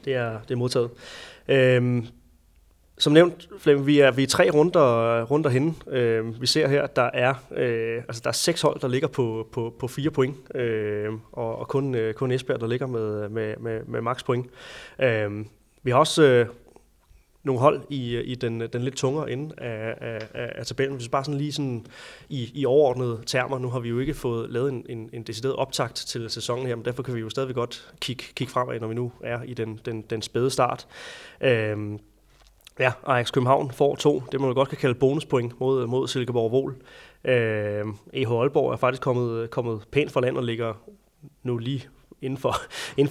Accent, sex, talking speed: native, male, 205 wpm